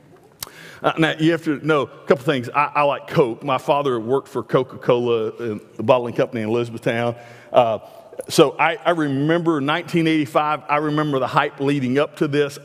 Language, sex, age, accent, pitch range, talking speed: English, male, 50-69, American, 115-155 Hz, 170 wpm